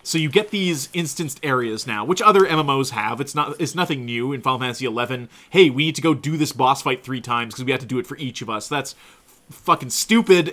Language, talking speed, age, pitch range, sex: English, 245 wpm, 30-49, 130-165 Hz, male